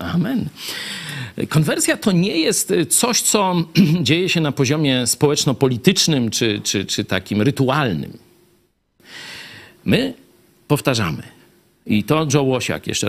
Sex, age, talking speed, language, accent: male, 50-69, 110 wpm, Polish, native